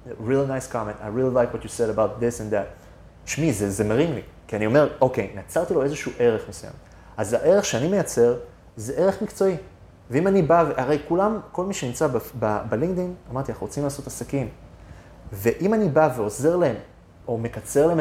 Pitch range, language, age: 110-155 Hz, Hebrew, 30-49